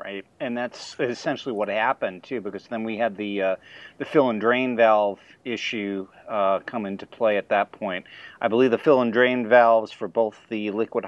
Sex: male